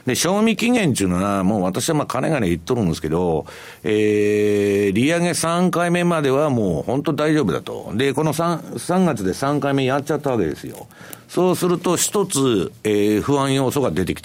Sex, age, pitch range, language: male, 60-79, 100-165 Hz, Japanese